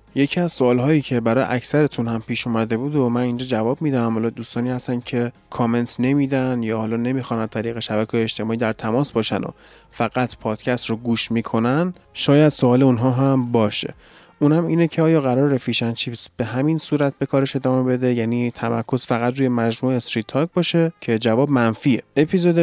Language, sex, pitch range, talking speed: Persian, male, 120-145 Hz, 185 wpm